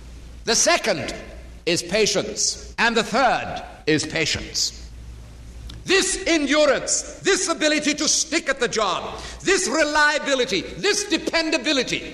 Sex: male